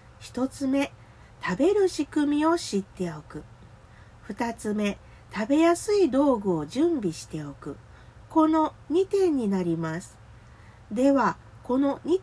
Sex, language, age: female, Japanese, 40-59